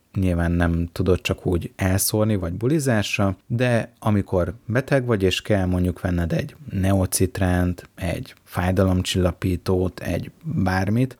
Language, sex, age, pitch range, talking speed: Hungarian, male, 30-49, 90-100 Hz, 120 wpm